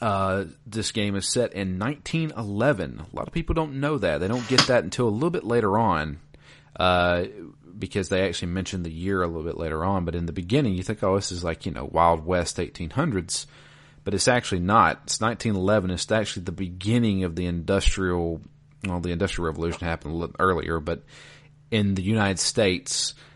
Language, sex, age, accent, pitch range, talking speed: English, male, 30-49, American, 90-125 Hz, 200 wpm